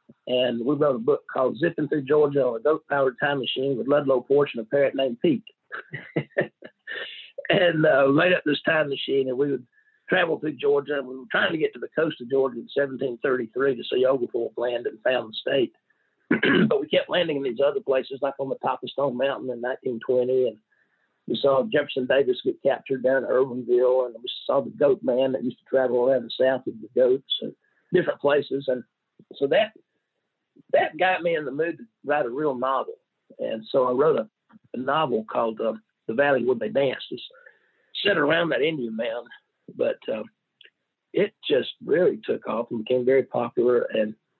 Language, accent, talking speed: English, American, 205 wpm